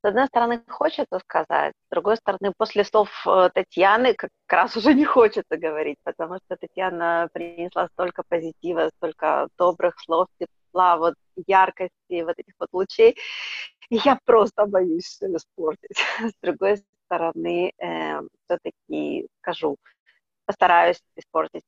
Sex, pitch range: female, 170-215 Hz